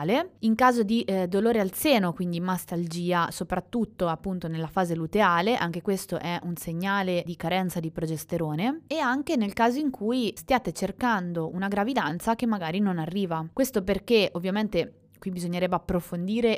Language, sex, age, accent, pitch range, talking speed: Italian, female, 20-39, native, 170-220 Hz, 155 wpm